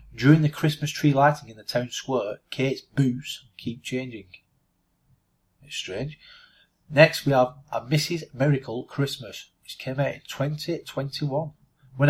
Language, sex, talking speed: English, male, 140 wpm